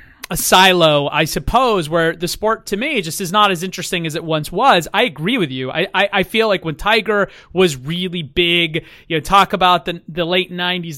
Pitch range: 165-200 Hz